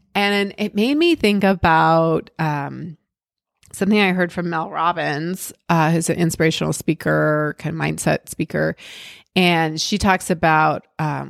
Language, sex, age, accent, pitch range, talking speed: English, female, 30-49, American, 165-230 Hz, 145 wpm